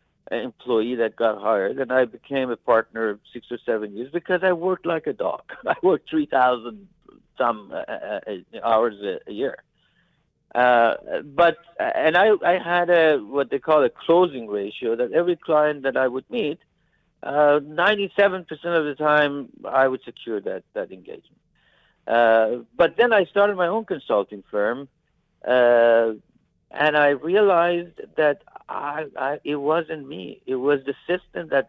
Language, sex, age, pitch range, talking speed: English, male, 60-79, 125-185 Hz, 155 wpm